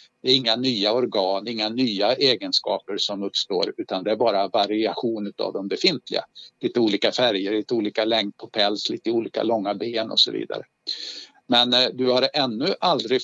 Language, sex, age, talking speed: Swedish, male, 50-69, 170 wpm